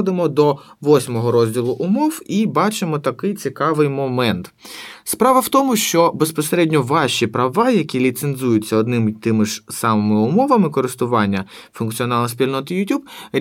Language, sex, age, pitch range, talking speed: Ukrainian, male, 20-39, 125-200 Hz, 125 wpm